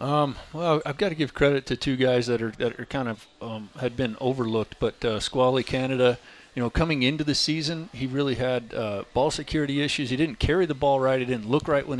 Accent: American